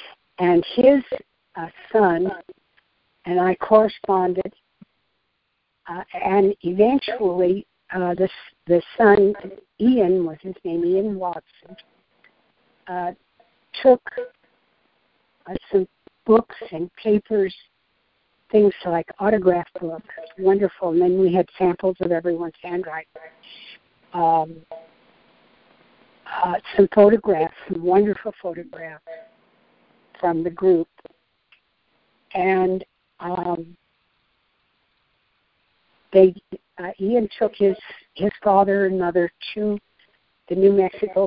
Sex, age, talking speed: female, 60-79, 95 wpm